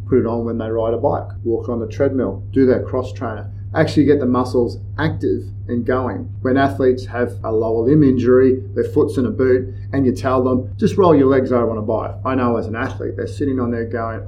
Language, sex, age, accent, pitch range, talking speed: English, male, 40-59, Australian, 105-125 Hz, 240 wpm